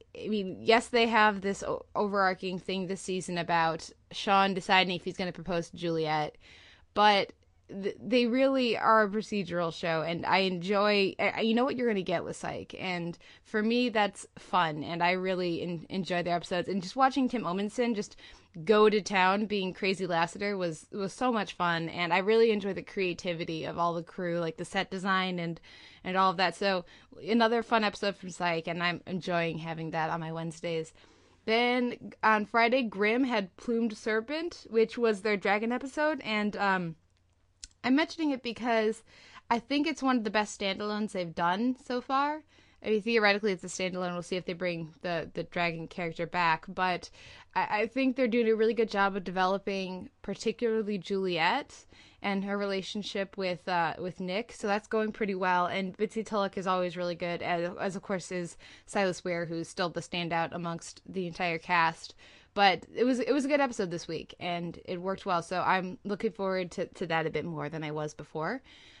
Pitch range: 175-220 Hz